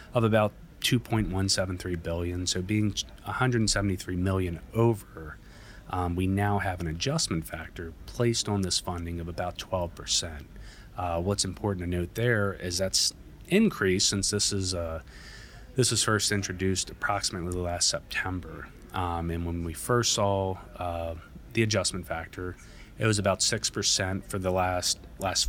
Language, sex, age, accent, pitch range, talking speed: English, male, 30-49, American, 85-105 Hz, 145 wpm